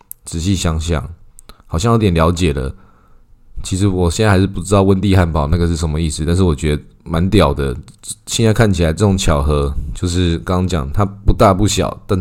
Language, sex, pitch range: Chinese, male, 80-100 Hz